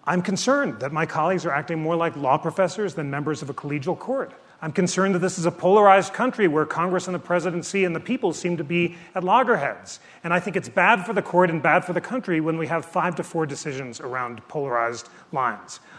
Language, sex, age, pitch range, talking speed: English, male, 40-59, 155-190 Hz, 230 wpm